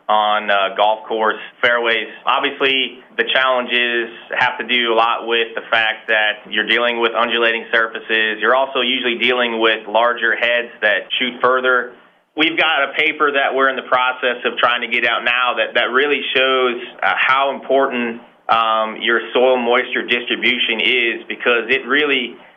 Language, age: English, 30-49